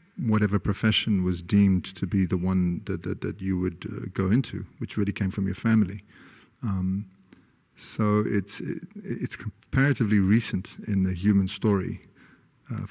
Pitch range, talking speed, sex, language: 95-110 Hz, 160 wpm, male, English